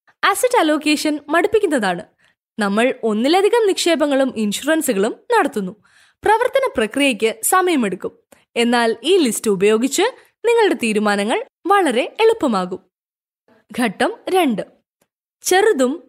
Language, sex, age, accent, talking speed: Malayalam, female, 20-39, native, 80 wpm